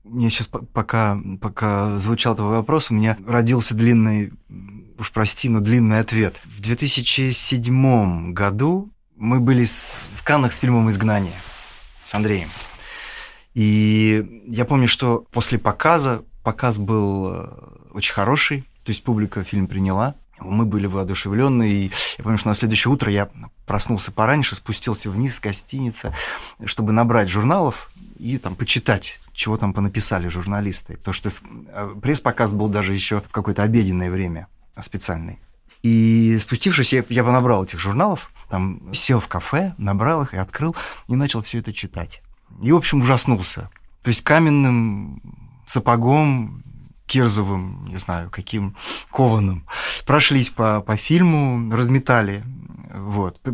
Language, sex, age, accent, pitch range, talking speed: Russian, male, 30-49, native, 100-125 Hz, 135 wpm